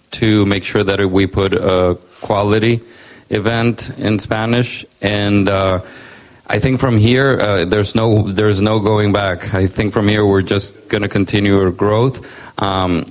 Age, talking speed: 30-49, 165 wpm